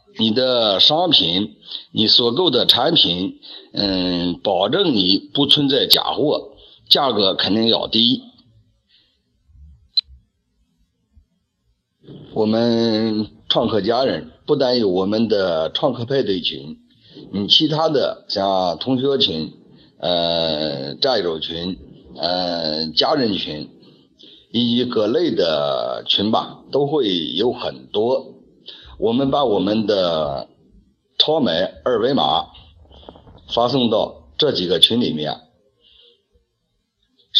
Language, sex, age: Chinese, male, 50-69